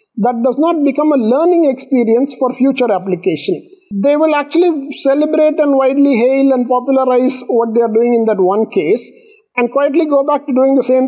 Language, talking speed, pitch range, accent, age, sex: English, 190 wpm, 225-280 Hz, Indian, 50-69, male